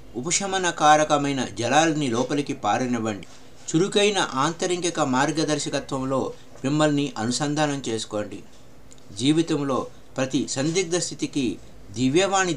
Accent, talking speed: native, 75 wpm